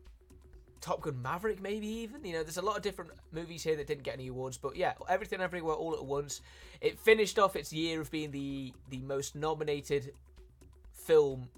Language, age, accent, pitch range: Italian, 20-39, British, 120-155 Hz